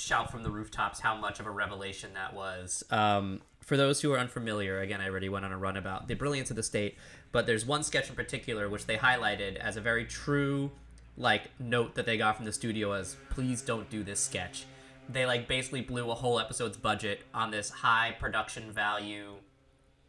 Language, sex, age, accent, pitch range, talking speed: English, male, 20-39, American, 105-125 Hz, 210 wpm